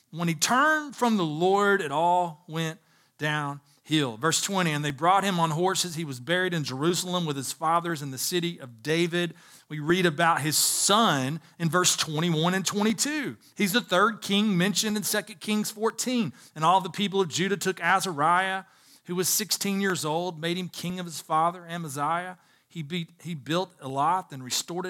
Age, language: 40-59, English